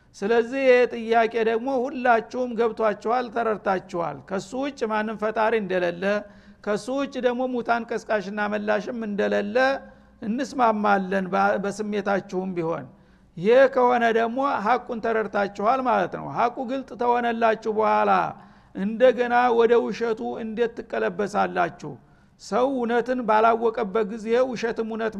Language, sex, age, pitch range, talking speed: Amharic, male, 60-79, 210-240 Hz, 100 wpm